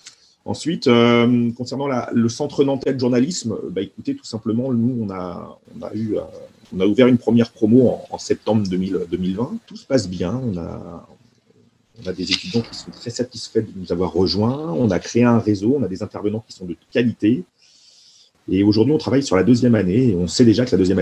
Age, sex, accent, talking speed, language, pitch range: 40-59, male, French, 190 wpm, French, 95-120 Hz